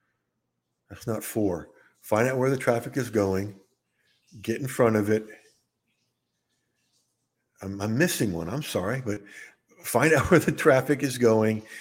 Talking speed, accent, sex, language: 140 wpm, American, male, English